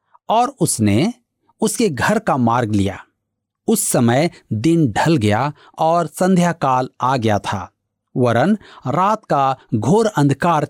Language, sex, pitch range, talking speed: Hindi, male, 120-195 Hz, 125 wpm